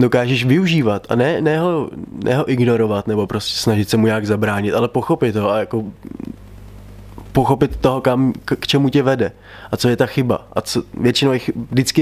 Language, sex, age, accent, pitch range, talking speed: Czech, male, 20-39, native, 105-125 Hz, 195 wpm